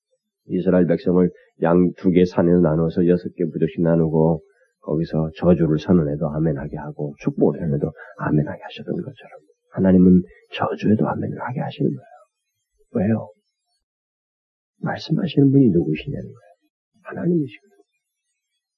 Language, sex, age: Korean, male, 40-59